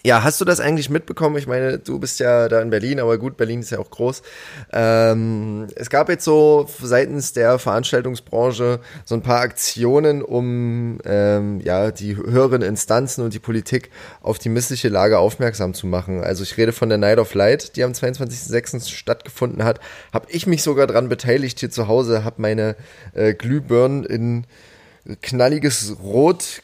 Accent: German